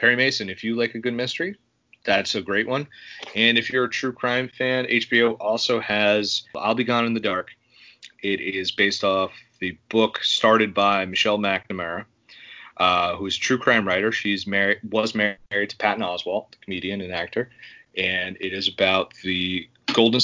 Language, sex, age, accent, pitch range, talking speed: English, male, 30-49, American, 95-115 Hz, 180 wpm